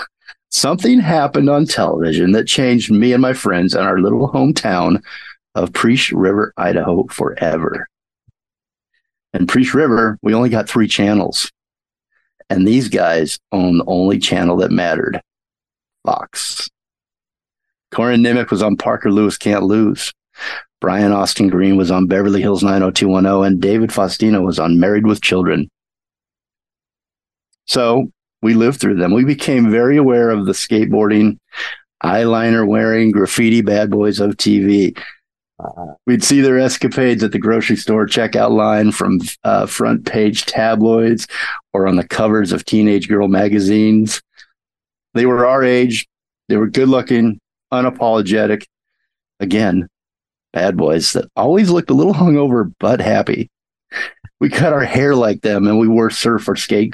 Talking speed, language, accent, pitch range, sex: 140 wpm, English, American, 100-120 Hz, male